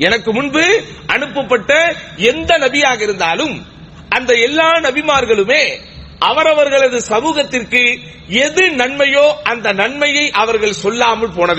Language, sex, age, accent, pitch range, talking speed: English, male, 40-59, Indian, 230-300 Hz, 115 wpm